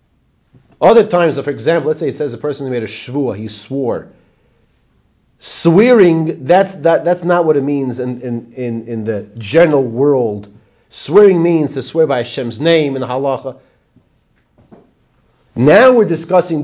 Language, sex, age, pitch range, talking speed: English, male, 40-59, 145-200 Hz, 160 wpm